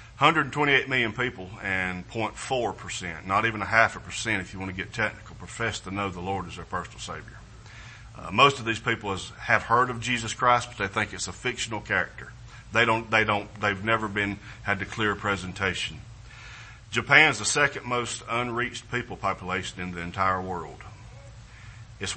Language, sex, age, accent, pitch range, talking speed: English, male, 40-59, American, 95-115 Hz, 185 wpm